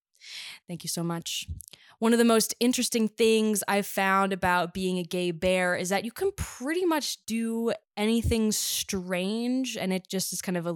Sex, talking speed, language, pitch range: female, 185 wpm, English, 175-210 Hz